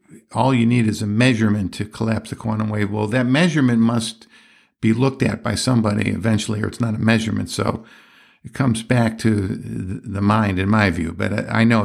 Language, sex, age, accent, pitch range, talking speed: English, male, 50-69, American, 105-125 Hz, 200 wpm